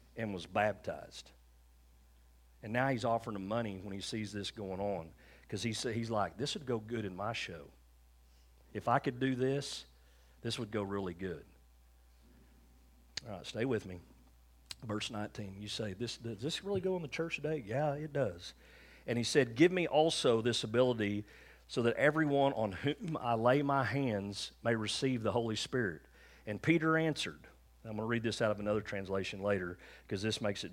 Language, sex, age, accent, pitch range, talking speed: English, male, 40-59, American, 95-120 Hz, 185 wpm